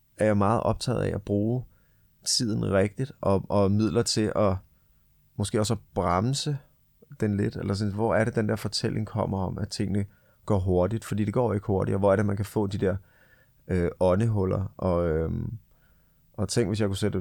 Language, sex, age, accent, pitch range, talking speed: Danish, male, 30-49, native, 95-110 Hz, 205 wpm